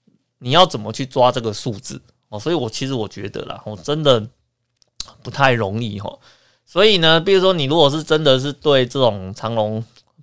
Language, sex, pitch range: Chinese, male, 110-135 Hz